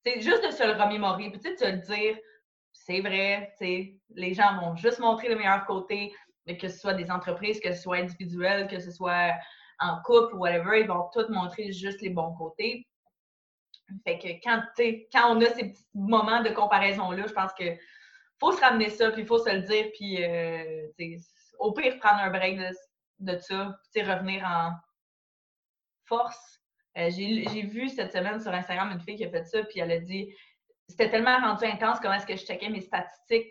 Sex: female